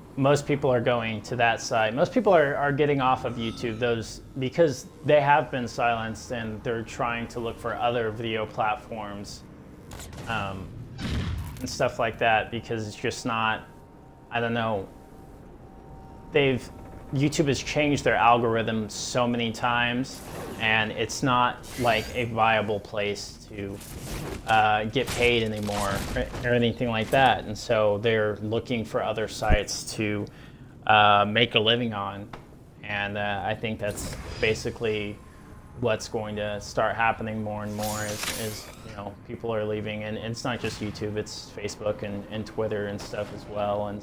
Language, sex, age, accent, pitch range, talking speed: English, male, 30-49, American, 105-120 Hz, 160 wpm